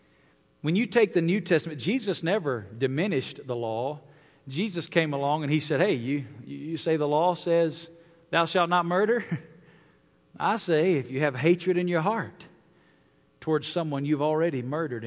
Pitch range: 135-175 Hz